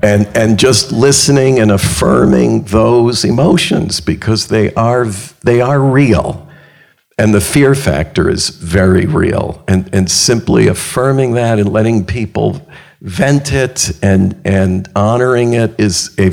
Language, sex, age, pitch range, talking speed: English, male, 50-69, 95-120 Hz, 135 wpm